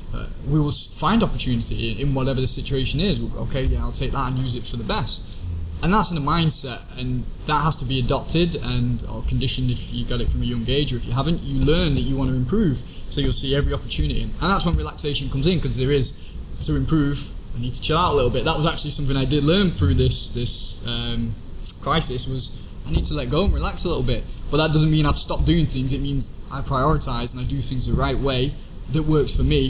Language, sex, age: English, male, 10-29